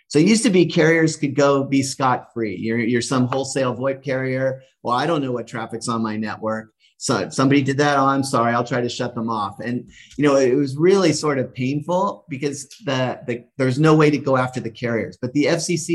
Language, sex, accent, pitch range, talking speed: English, male, American, 115-140 Hz, 235 wpm